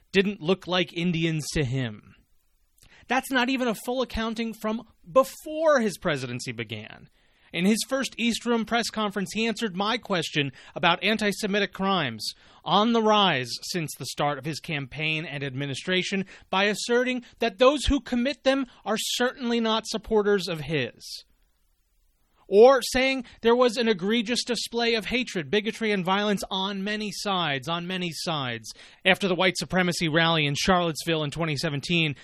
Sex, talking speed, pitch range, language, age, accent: male, 155 wpm, 155-225 Hz, English, 30-49, American